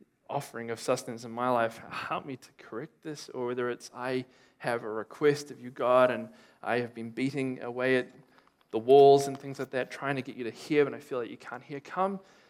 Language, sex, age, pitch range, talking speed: English, male, 20-39, 120-140 Hz, 230 wpm